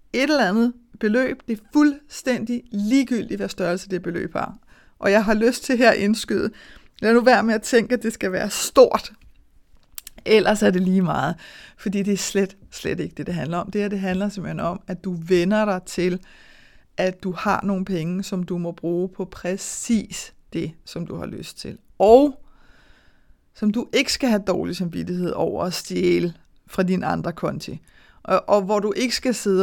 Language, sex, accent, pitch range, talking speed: Danish, female, native, 185-225 Hz, 195 wpm